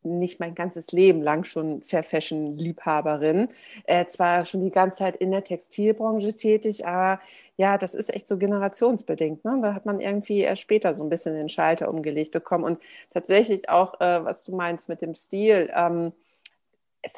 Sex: female